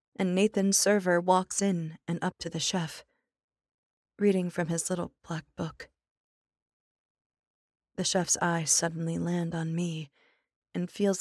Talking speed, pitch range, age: 135 wpm, 165-195 Hz, 20-39